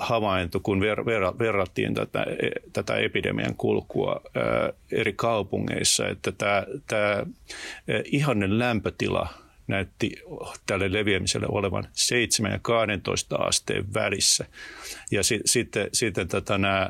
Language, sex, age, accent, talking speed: Finnish, male, 50-69, native, 115 wpm